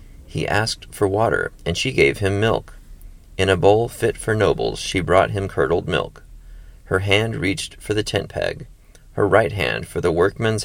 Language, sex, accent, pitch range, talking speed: English, male, American, 85-115 Hz, 185 wpm